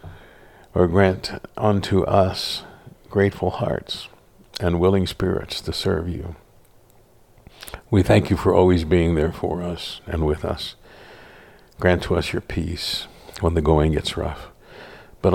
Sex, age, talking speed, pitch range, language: male, 60-79, 135 wpm, 80-95 Hz, English